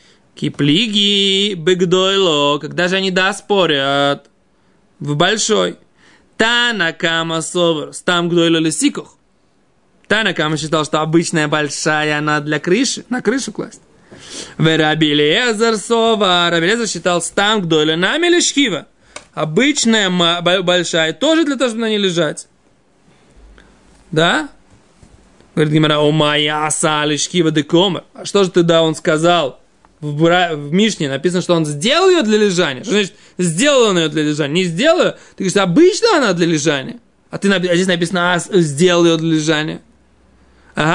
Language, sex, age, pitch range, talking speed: Russian, male, 20-39, 165-225 Hz, 130 wpm